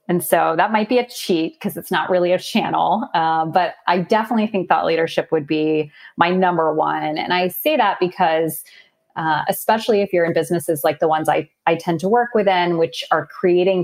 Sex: female